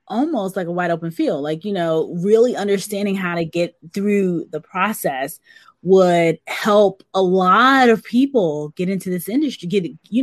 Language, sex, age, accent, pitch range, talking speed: English, female, 20-39, American, 165-205 Hz, 170 wpm